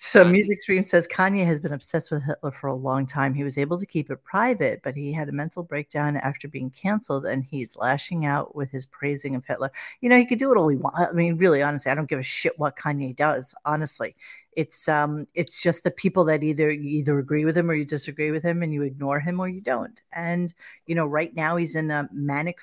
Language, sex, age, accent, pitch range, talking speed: English, female, 40-59, American, 140-170 Hz, 250 wpm